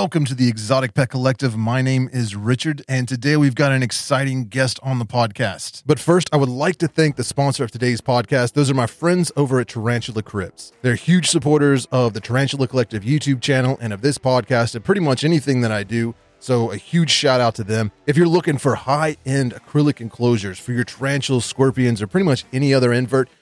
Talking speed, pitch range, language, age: 215 wpm, 115-140 Hz, English, 30-49